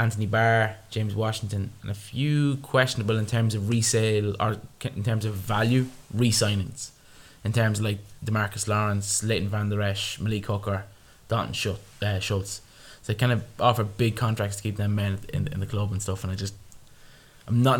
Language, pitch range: English, 100-120 Hz